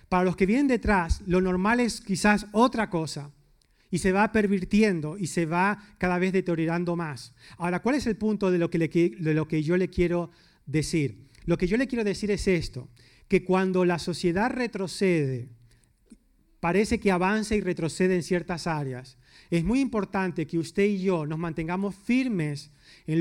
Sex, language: male, Spanish